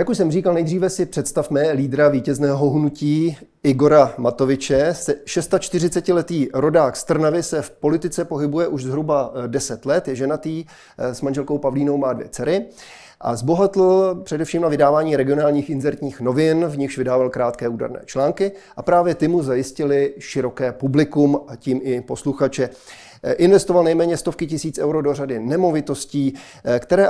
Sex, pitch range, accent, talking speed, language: male, 135-170 Hz, native, 145 wpm, Czech